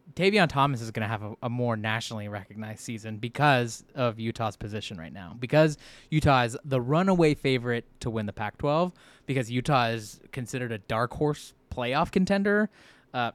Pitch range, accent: 120-155 Hz, American